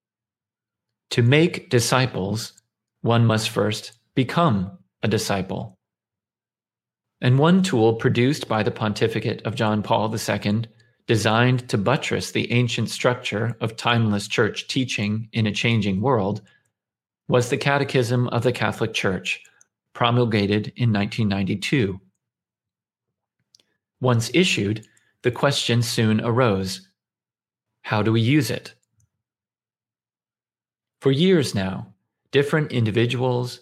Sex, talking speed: male, 105 wpm